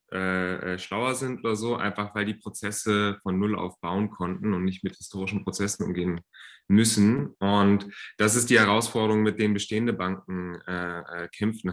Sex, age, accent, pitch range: male, 30-49, German, 90-110 Hz